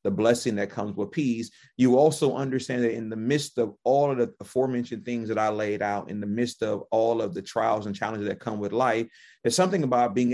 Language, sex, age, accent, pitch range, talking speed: English, male, 30-49, American, 110-130 Hz, 240 wpm